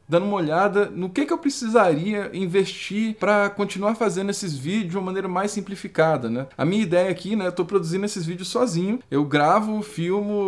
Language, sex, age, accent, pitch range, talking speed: Portuguese, male, 10-29, Brazilian, 150-200 Hz, 200 wpm